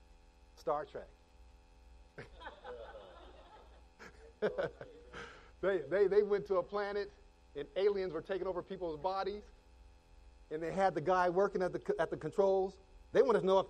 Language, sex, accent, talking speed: English, male, American, 140 wpm